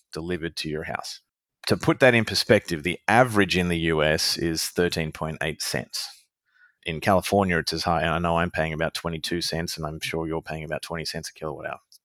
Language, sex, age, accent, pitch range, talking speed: English, male, 30-49, Australian, 80-95 Hz, 205 wpm